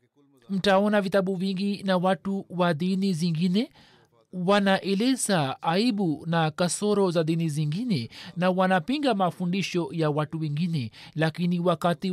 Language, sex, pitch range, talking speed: Swahili, male, 175-200 Hz, 115 wpm